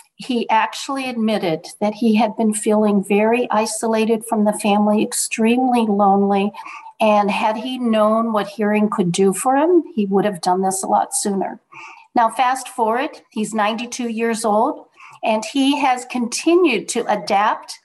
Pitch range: 210-265 Hz